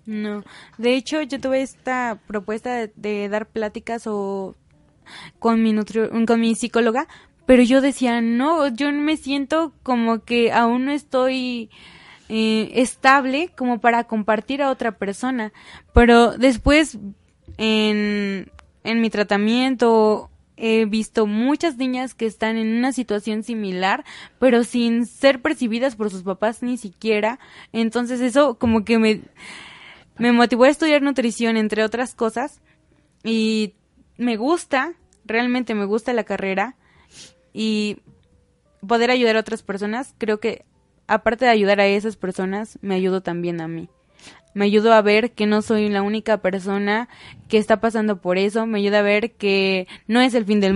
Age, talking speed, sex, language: 20-39, 150 wpm, female, Spanish